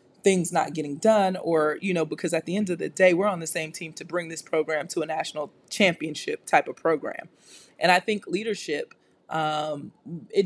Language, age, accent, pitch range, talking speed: English, 30-49, American, 155-190 Hz, 205 wpm